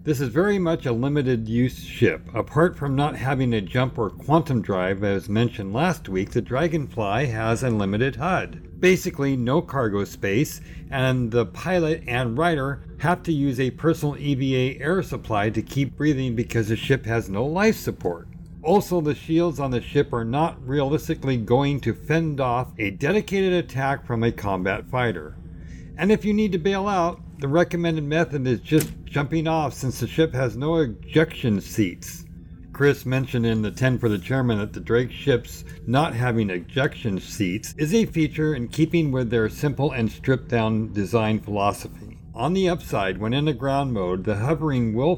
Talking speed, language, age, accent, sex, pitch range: 180 wpm, English, 60-79, American, male, 115-155 Hz